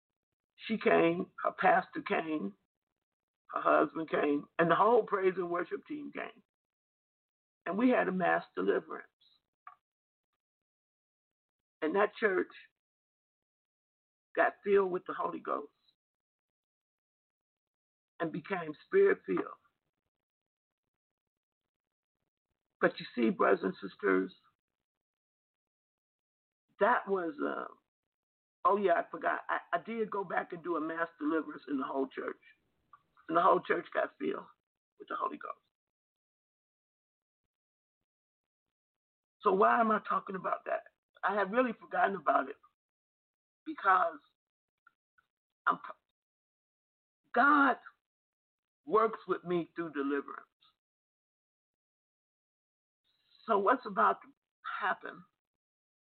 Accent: American